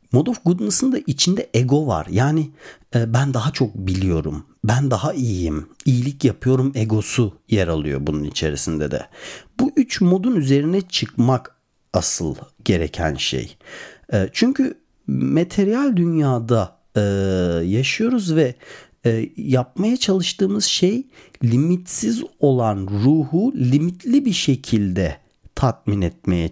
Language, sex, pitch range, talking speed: Turkish, male, 95-160 Hz, 105 wpm